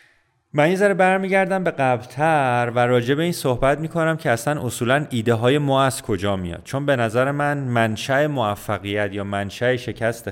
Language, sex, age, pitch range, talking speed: Persian, male, 30-49, 110-145 Hz, 175 wpm